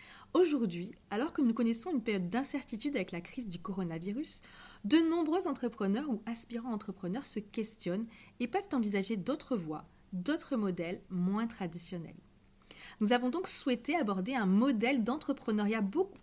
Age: 30-49